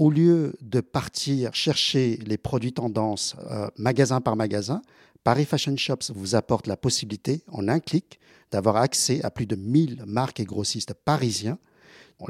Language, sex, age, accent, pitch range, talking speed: French, male, 50-69, French, 115-155 Hz, 160 wpm